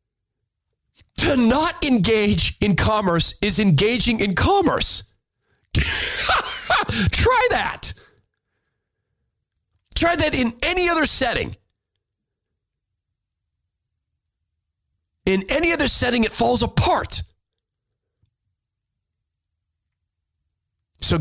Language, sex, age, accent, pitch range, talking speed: English, male, 40-59, American, 95-140 Hz, 70 wpm